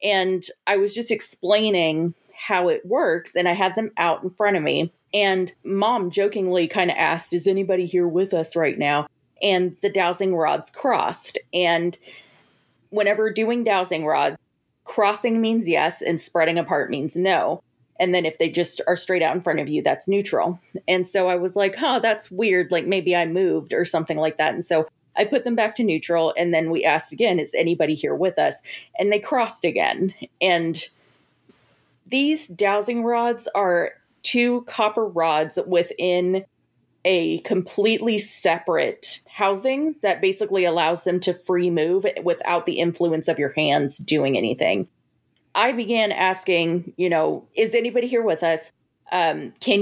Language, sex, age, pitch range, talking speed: English, female, 30-49, 170-210 Hz, 170 wpm